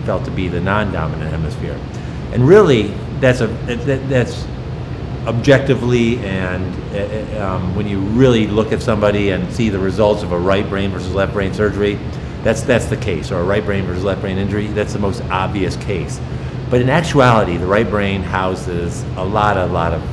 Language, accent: English, American